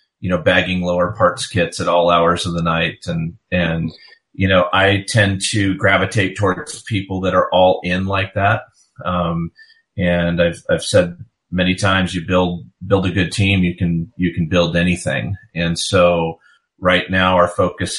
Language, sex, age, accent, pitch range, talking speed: English, male, 30-49, American, 90-100 Hz, 175 wpm